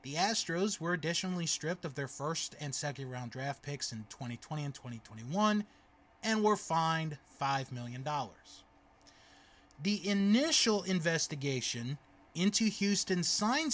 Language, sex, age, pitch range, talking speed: English, male, 20-39, 150-220 Hz, 120 wpm